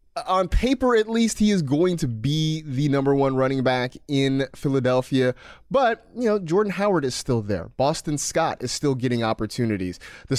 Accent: American